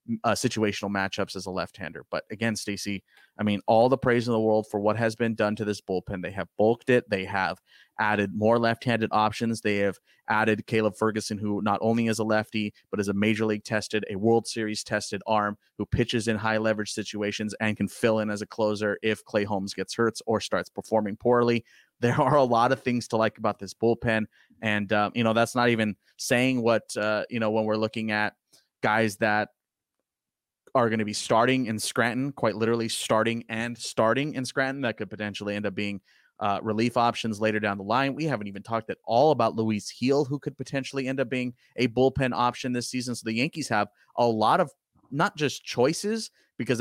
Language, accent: English, American